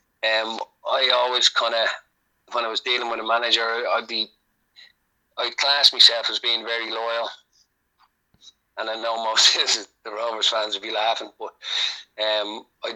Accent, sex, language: Irish, male, English